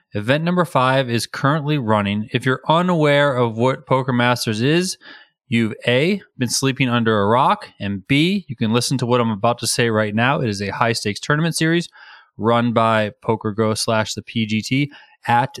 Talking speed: 185 wpm